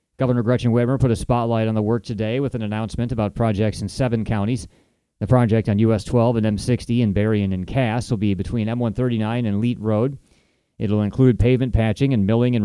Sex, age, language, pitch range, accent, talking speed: male, 30-49, English, 110-125 Hz, American, 210 wpm